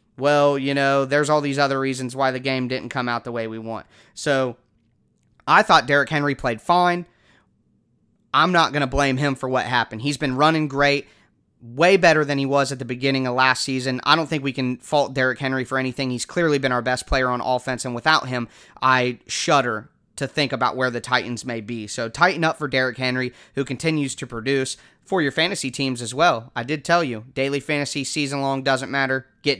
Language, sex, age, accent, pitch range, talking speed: English, male, 30-49, American, 125-145 Hz, 215 wpm